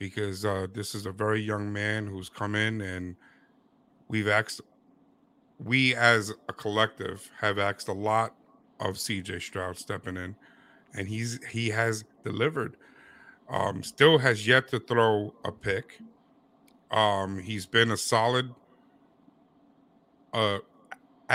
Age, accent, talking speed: 50-69, American, 130 wpm